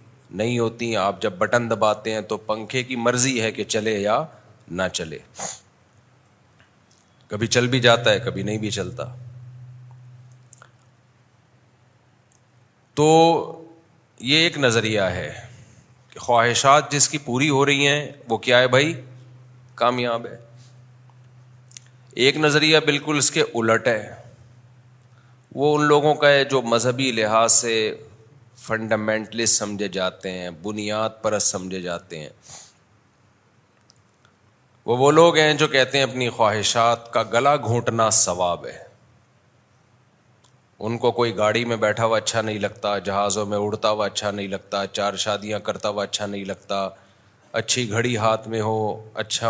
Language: Urdu